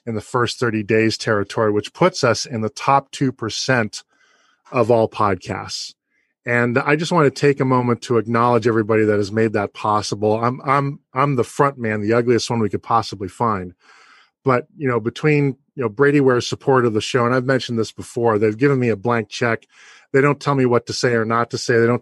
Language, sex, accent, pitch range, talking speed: English, male, American, 110-130 Hz, 220 wpm